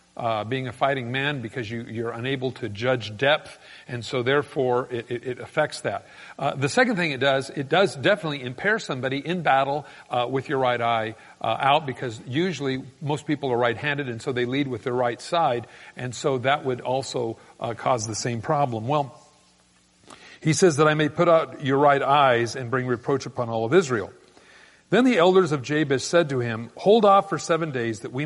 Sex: male